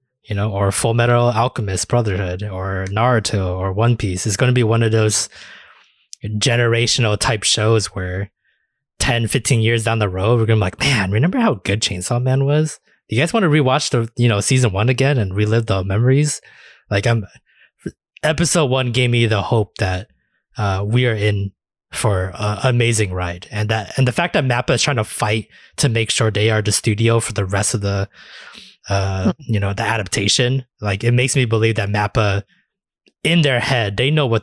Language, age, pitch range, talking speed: English, 20-39, 100-120 Hz, 200 wpm